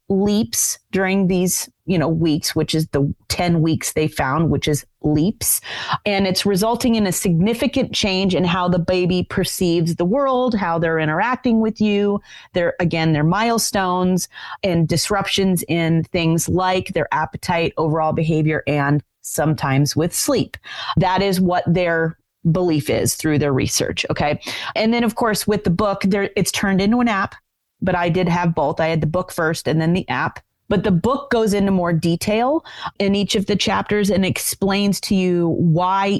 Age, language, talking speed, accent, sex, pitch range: 30-49, English, 175 wpm, American, female, 165-210 Hz